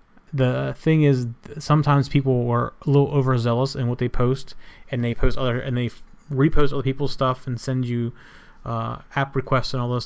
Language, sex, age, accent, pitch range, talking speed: English, male, 30-49, American, 120-140 Hz, 205 wpm